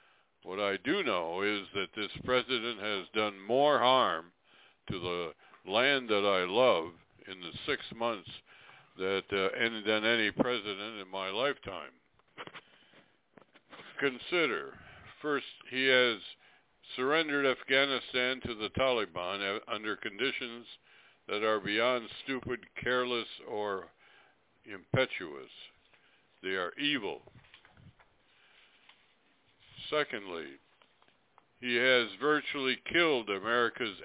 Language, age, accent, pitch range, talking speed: English, 60-79, American, 105-130 Hz, 100 wpm